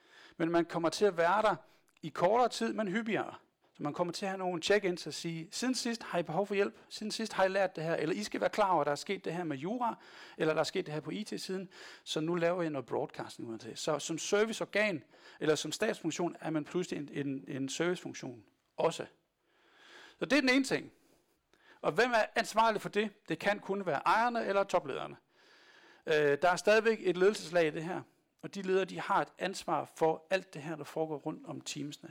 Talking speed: 230 wpm